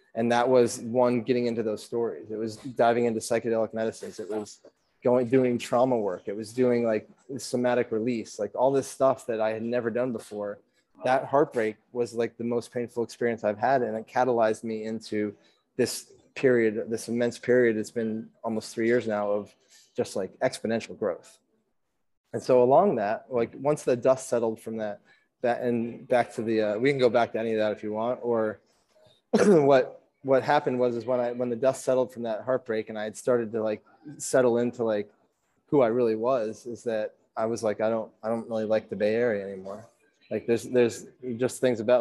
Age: 20-39